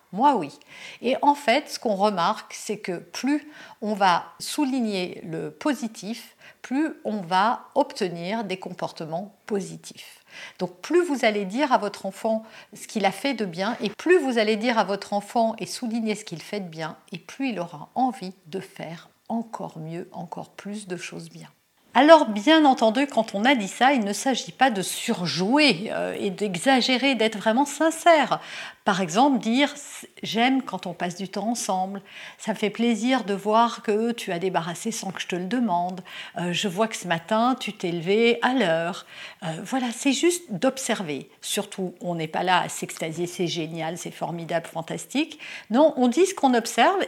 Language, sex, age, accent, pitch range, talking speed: French, female, 50-69, French, 185-255 Hz, 190 wpm